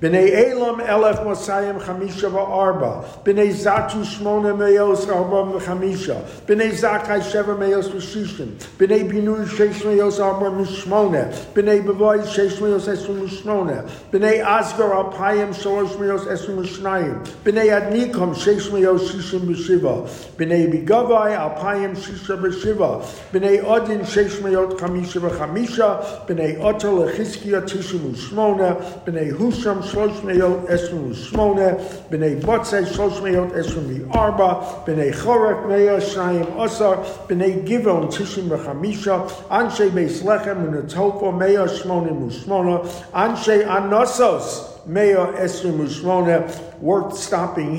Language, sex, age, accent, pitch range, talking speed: English, male, 60-79, American, 180-205 Hz, 100 wpm